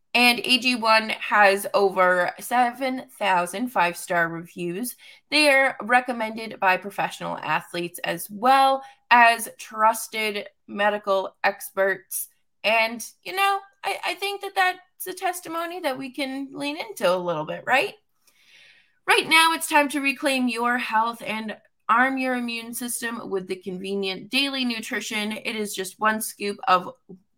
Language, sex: English, female